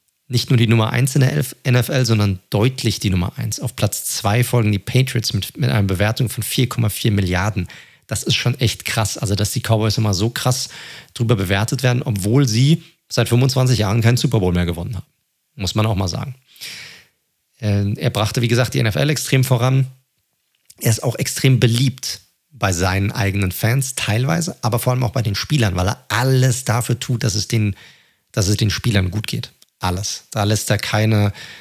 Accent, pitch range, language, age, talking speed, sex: German, 105-130 Hz, German, 40-59, 190 wpm, male